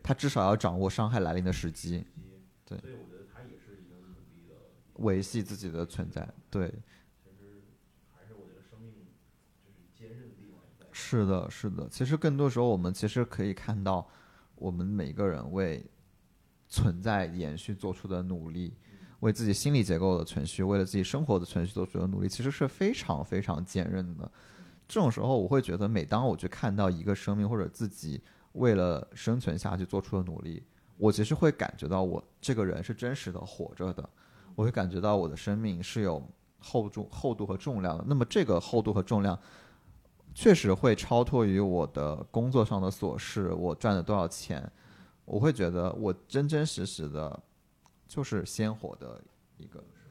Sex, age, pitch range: male, 20-39, 90-115 Hz